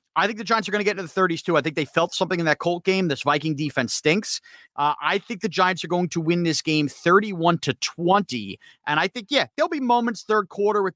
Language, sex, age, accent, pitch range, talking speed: English, male, 30-49, American, 150-190 Hz, 255 wpm